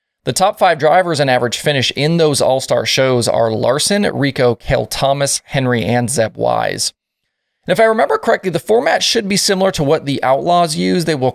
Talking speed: 195 wpm